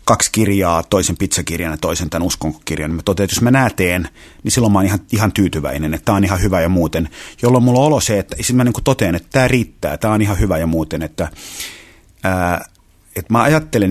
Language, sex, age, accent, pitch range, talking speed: Finnish, male, 30-49, native, 90-115 Hz, 220 wpm